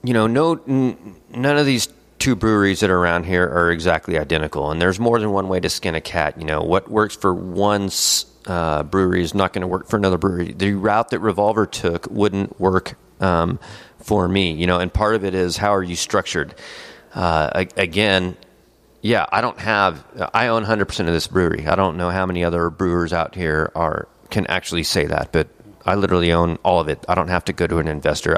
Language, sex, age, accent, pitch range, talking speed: English, male, 30-49, American, 85-105 Hz, 220 wpm